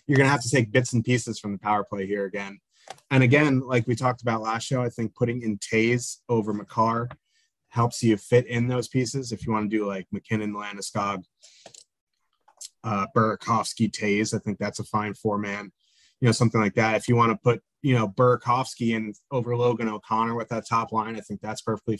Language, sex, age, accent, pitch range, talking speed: English, male, 30-49, American, 110-125 Hz, 215 wpm